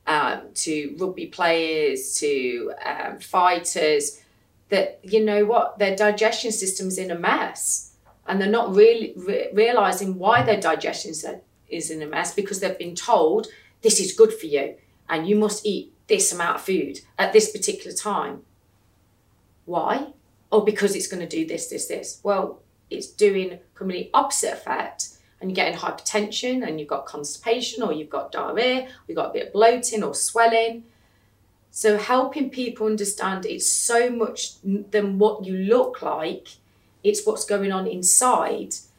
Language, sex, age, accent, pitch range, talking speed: English, female, 40-59, British, 190-265 Hz, 160 wpm